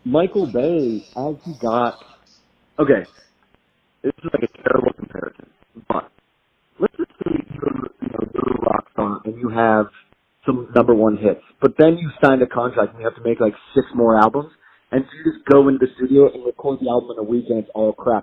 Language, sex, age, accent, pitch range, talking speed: English, male, 40-59, American, 110-140 Hz, 195 wpm